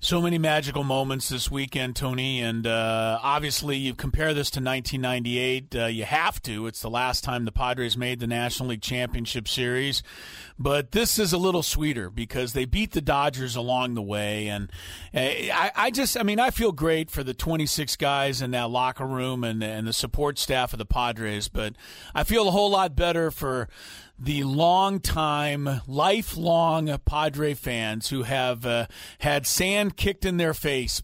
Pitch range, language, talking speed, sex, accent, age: 125-160 Hz, English, 180 wpm, male, American, 40-59